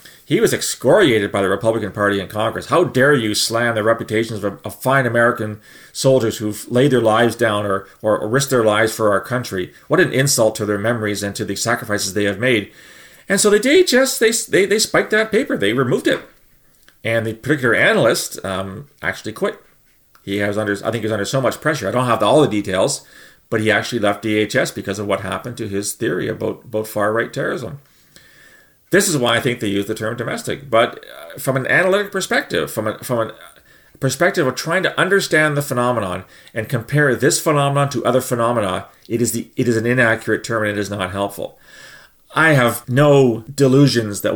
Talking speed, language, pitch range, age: 205 wpm, English, 105-130 Hz, 40-59